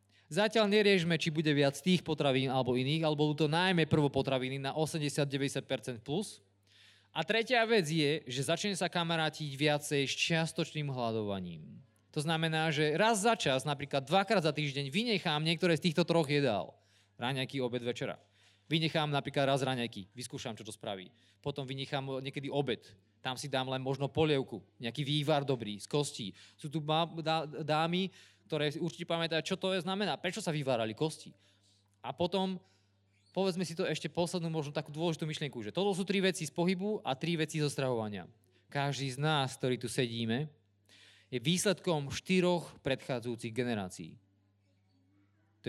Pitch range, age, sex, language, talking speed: 120-165 Hz, 20-39, male, Slovak, 160 wpm